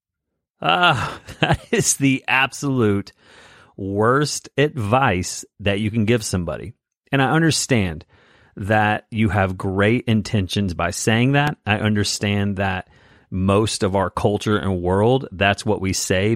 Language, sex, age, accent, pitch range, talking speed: English, male, 30-49, American, 95-120 Hz, 130 wpm